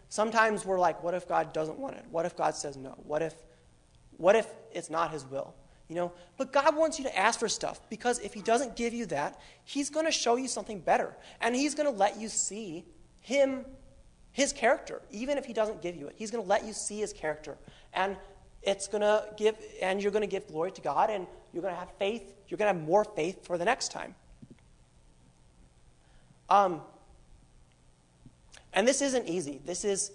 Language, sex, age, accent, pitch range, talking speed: English, male, 30-49, American, 155-215 Hz, 215 wpm